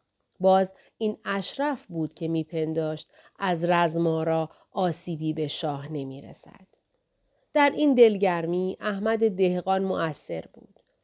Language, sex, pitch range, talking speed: Persian, female, 170-230 Hz, 110 wpm